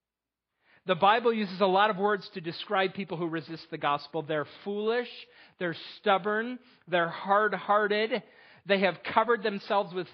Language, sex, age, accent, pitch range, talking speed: English, male, 40-59, American, 160-200 Hz, 150 wpm